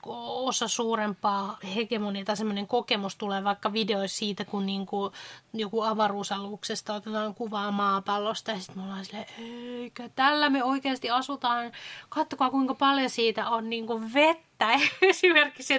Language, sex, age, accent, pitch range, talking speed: Finnish, female, 20-39, native, 210-255 Hz, 120 wpm